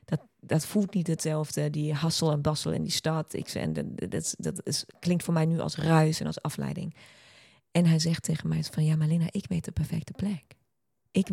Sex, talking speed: female, 230 wpm